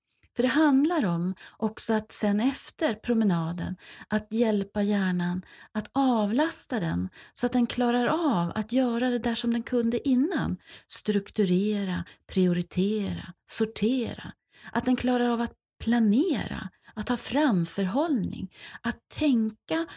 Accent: native